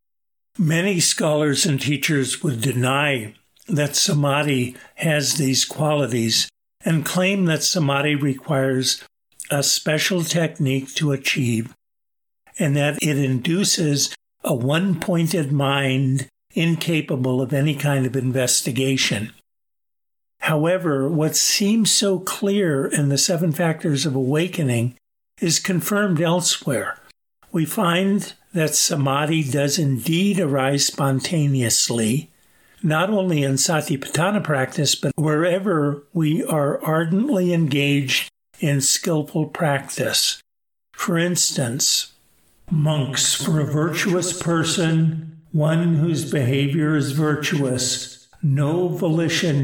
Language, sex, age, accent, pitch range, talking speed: English, male, 60-79, American, 135-165 Hz, 100 wpm